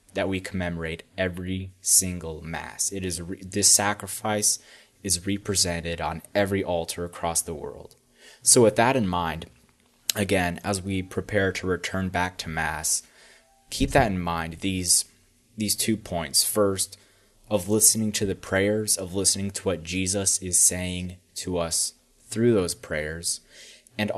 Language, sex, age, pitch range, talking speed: English, male, 20-39, 85-100 Hz, 150 wpm